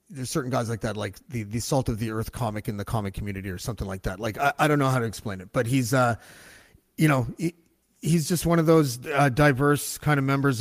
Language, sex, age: English, male, 30-49